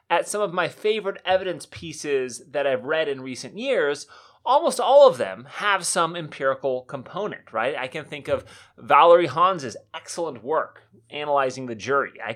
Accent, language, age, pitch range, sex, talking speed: American, English, 30-49, 130-180 Hz, male, 165 wpm